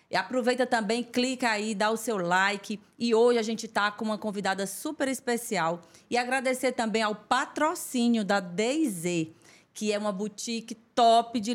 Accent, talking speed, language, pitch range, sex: Brazilian, 160 wpm, Portuguese, 195-235 Hz, female